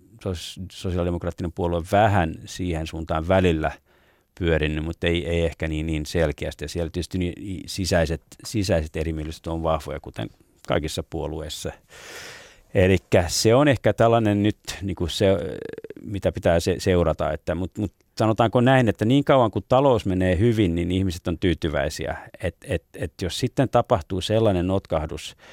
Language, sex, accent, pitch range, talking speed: Finnish, male, native, 85-105 Hz, 140 wpm